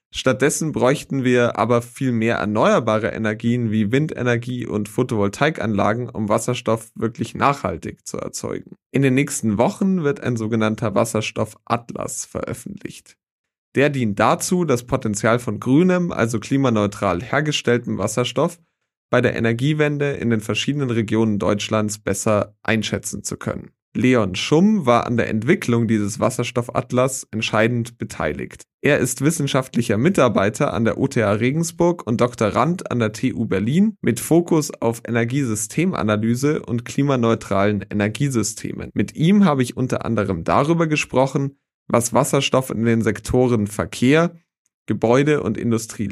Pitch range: 110-140 Hz